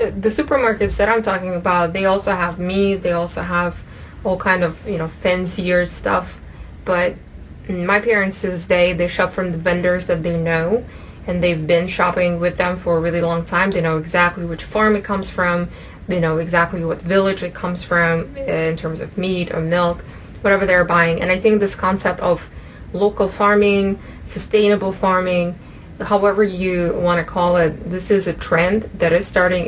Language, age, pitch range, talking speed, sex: English, 20-39, 165-195 Hz, 190 wpm, female